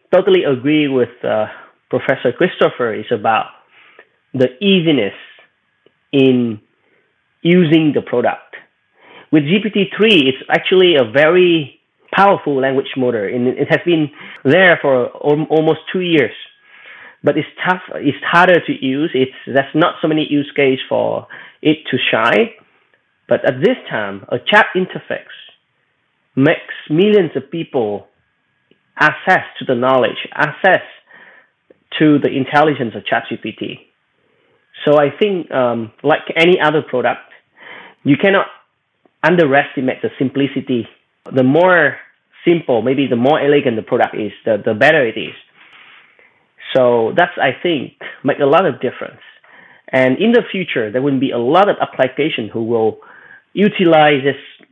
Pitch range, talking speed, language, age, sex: 130-165 Hz, 135 wpm, English, 20-39, male